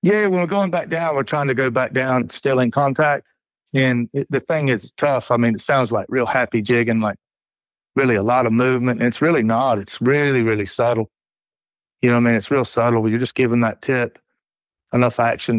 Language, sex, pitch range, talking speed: English, male, 115-130 Hz, 225 wpm